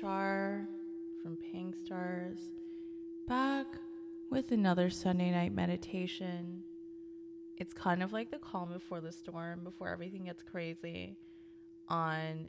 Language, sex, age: English, female, 20-39